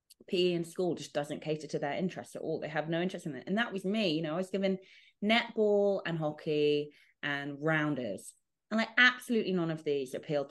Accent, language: British, English